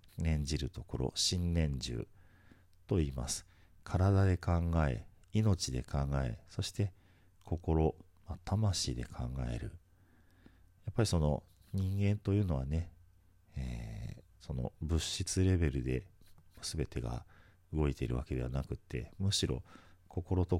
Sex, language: male, Japanese